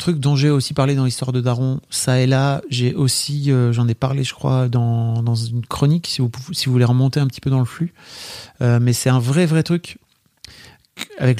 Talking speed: 225 wpm